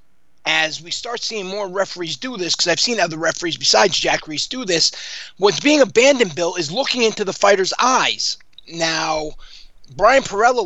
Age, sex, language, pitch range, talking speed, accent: 30-49, male, English, 155-205 Hz, 175 wpm, American